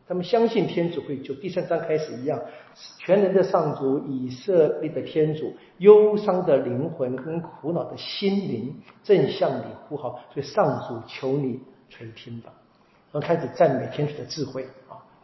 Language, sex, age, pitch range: Chinese, male, 50-69, 135-180 Hz